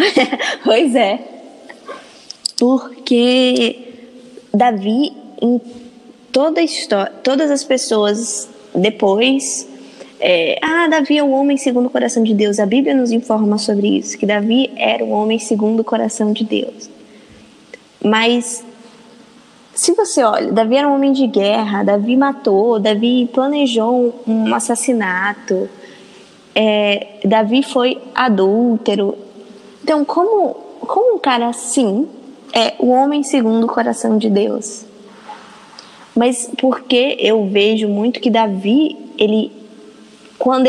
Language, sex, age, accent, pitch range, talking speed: Portuguese, female, 20-39, Brazilian, 215-265 Hz, 125 wpm